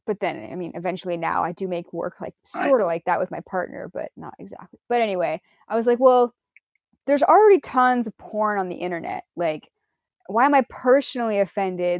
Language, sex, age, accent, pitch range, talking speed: English, female, 10-29, American, 190-245 Hz, 205 wpm